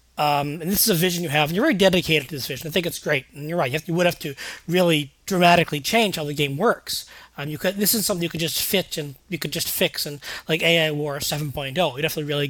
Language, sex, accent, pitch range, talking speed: English, male, American, 150-180 Hz, 285 wpm